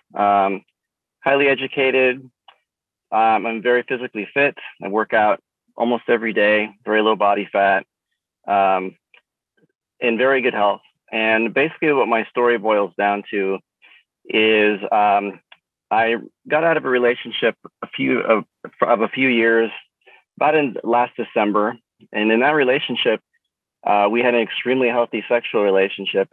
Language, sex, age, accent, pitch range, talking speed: English, male, 30-49, American, 105-120 Hz, 140 wpm